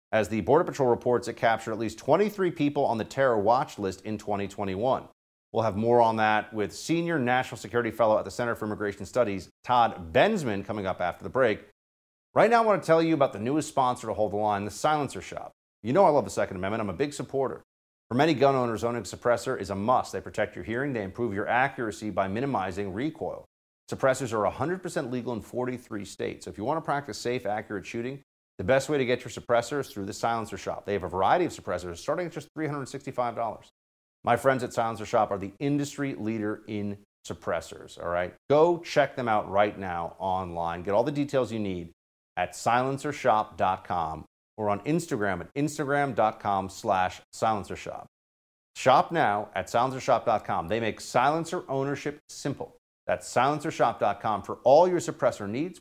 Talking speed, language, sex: 190 wpm, English, male